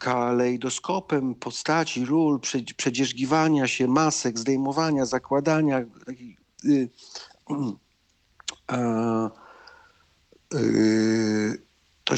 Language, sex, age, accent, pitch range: Polish, male, 50-69, native, 120-150 Hz